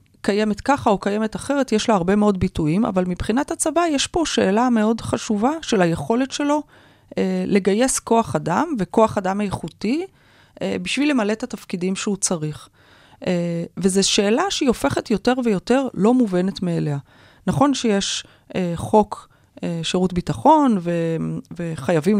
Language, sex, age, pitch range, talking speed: Hebrew, female, 30-49, 165-230 Hz, 145 wpm